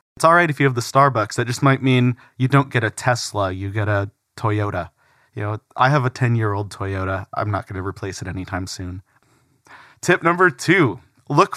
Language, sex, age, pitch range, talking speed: English, male, 30-49, 110-140 Hz, 210 wpm